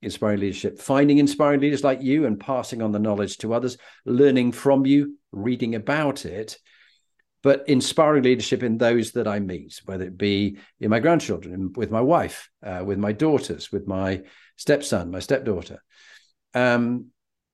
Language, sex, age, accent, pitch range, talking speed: English, male, 50-69, British, 100-135 Hz, 160 wpm